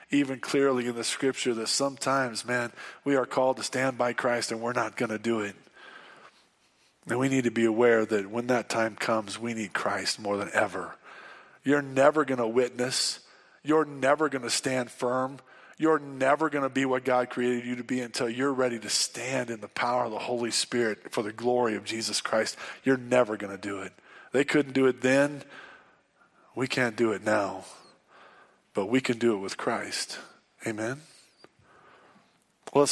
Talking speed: 190 wpm